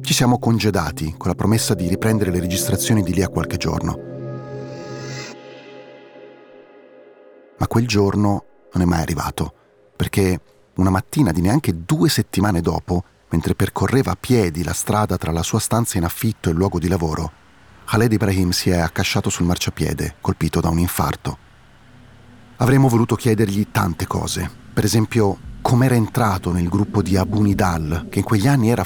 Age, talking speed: 40-59, 160 wpm